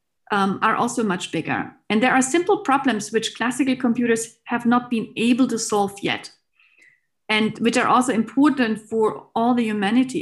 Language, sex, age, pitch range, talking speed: English, female, 40-59, 205-250 Hz, 170 wpm